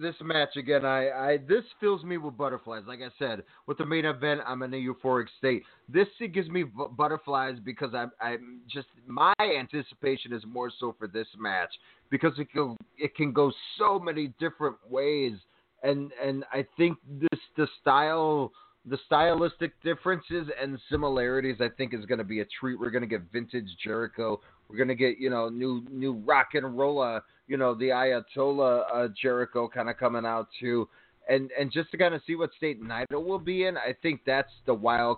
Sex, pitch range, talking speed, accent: male, 125-155 Hz, 195 wpm, American